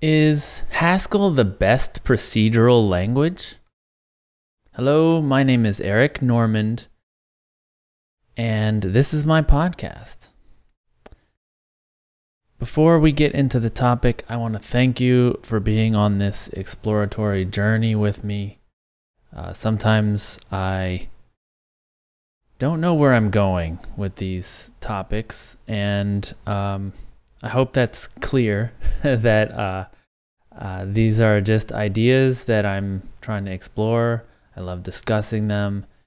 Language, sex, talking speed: English, male, 115 wpm